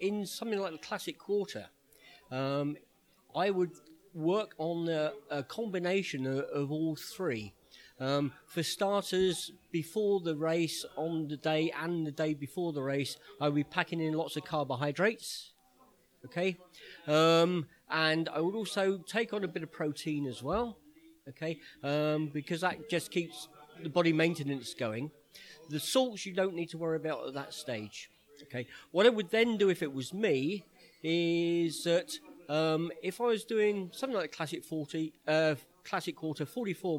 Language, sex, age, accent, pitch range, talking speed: English, male, 40-59, British, 150-185 Hz, 160 wpm